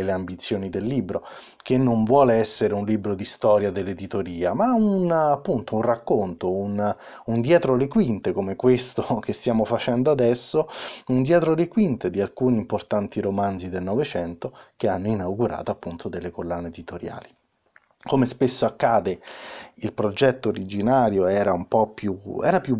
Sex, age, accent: male, 30-49, native